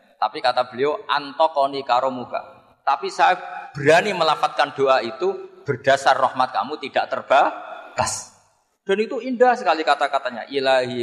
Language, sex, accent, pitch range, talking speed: Indonesian, male, native, 115-150 Hz, 125 wpm